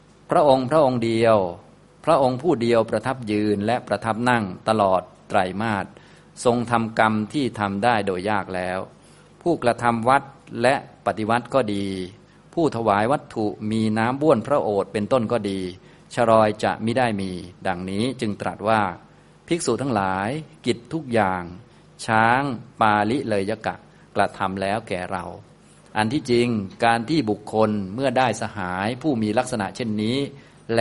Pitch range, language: 100-120 Hz, Thai